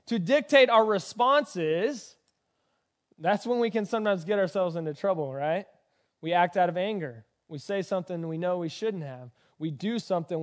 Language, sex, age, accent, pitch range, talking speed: English, male, 20-39, American, 180-255 Hz, 175 wpm